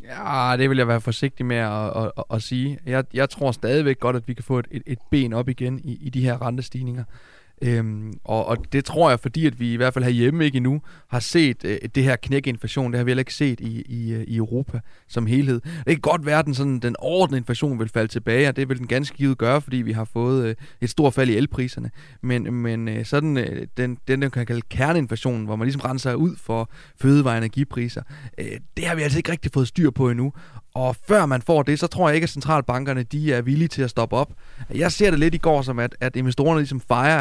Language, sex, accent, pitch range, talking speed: Danish, male, native, 120-145 Hz, 250 wpm